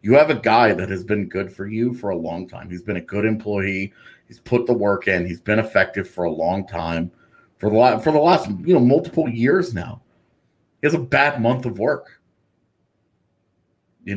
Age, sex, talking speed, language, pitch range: 30-49, male, 210 wpm, English, 100-125 Hz